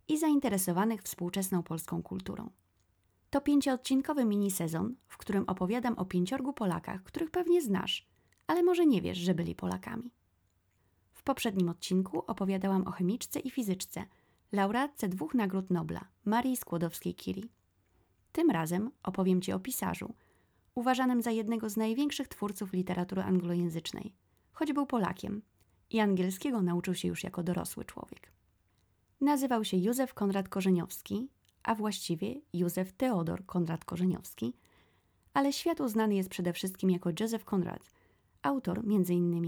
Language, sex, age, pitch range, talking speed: Polish, female, 20-39, 175-230 Hz, 130 wpm